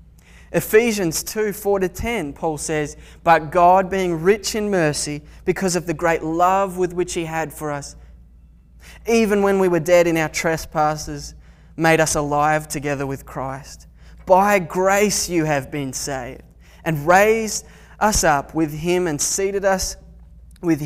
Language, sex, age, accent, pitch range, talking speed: English, male, 20-39, Australian, 145-180 Hz, 155 wpm